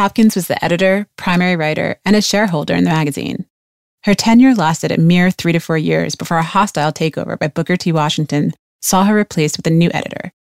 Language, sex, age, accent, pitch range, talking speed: English, female, 30-49, American, 155-190 Hz, 205 wpm